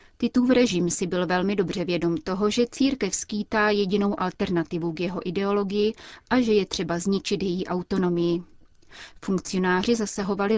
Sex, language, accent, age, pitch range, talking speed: female, Czech, native, 30-49, 175-210 Hz, 145 wpm